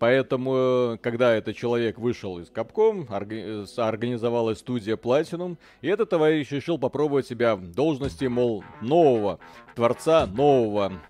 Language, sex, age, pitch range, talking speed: Russian, male, 30-49, 110-140 Hz, 120 wpm